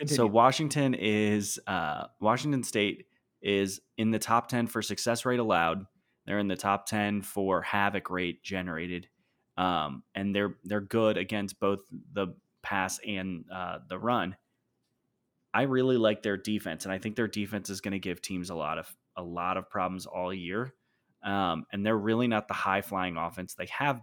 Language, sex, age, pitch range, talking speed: English, male, 20-39, 95-115 Hz, 180 wpm